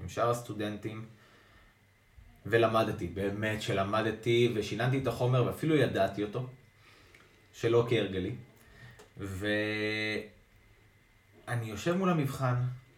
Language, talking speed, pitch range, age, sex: Hebrew, 85 wpm, 105-135 Hz, 20-39, male